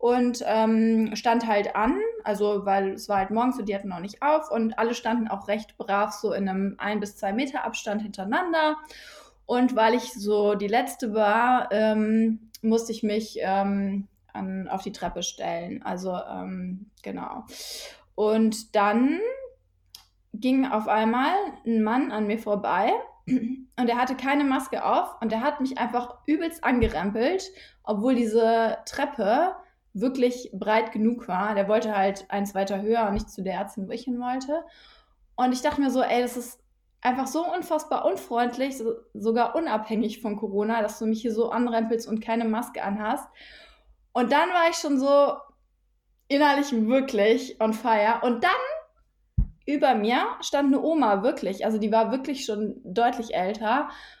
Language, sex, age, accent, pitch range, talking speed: German, female, 20-39, German, 210-260 Hz, 165 wpm